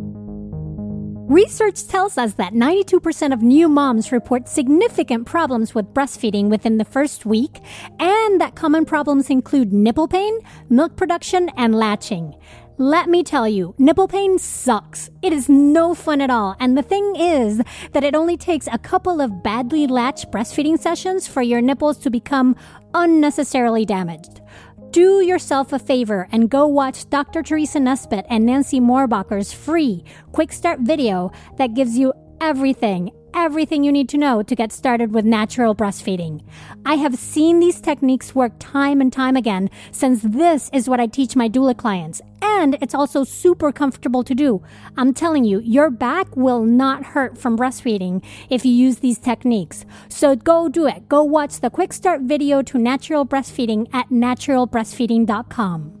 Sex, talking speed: female, 160 wpm